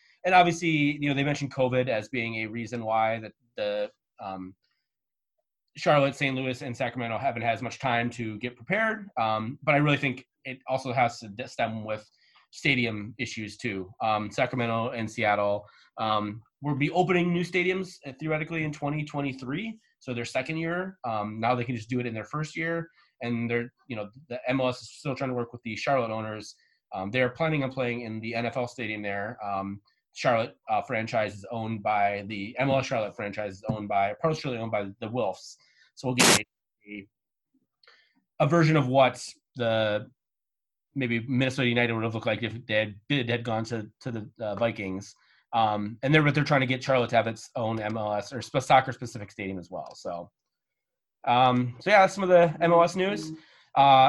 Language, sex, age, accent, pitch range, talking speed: English, male, 20-39, American, 110-145 Hz, 195 wpm